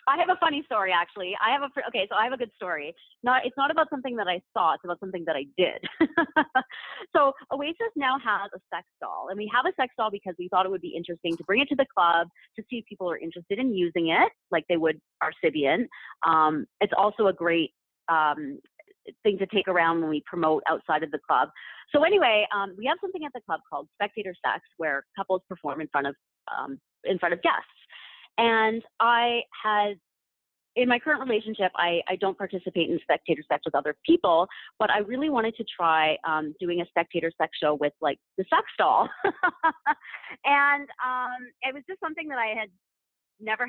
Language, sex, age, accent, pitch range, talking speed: English, female, 30-49, American, 170-265 Hz, 210 wpm